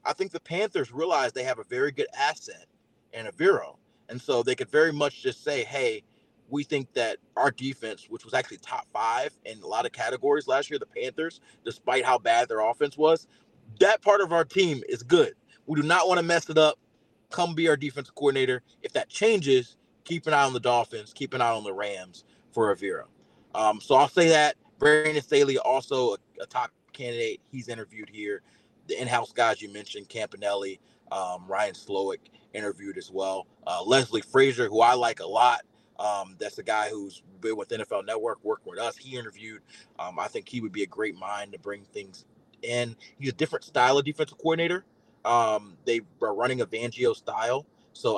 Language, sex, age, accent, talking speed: English, male, 30-49, American, 200 wpm